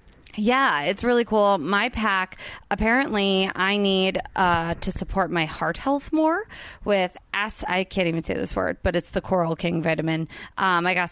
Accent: American